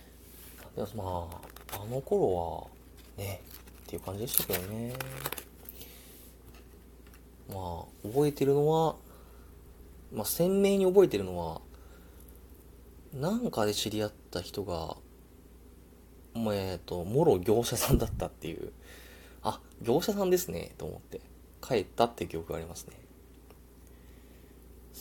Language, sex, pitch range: Japanese, male, 80-120 Hz